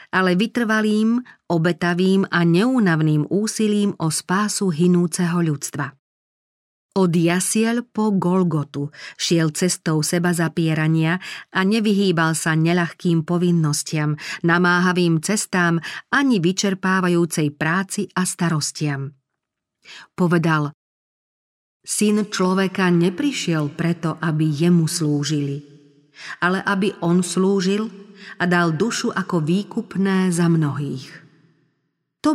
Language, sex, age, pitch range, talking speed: Slovak, female, 40-59, 155-195 Hz, 95 wpm